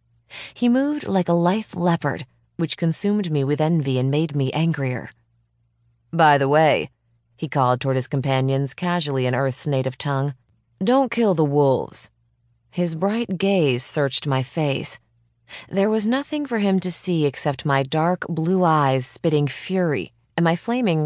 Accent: American